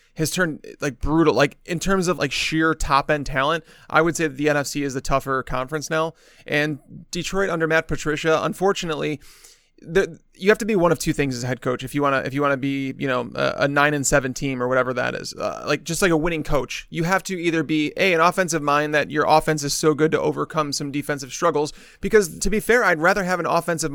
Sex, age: male, 30-49